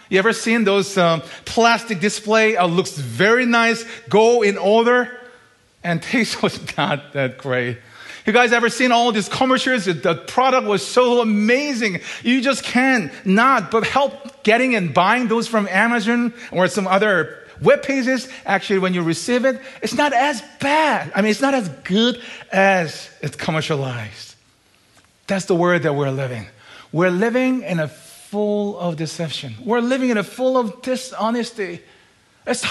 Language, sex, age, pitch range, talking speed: English, male, 40-59, 170-235 Hz, 165 wpm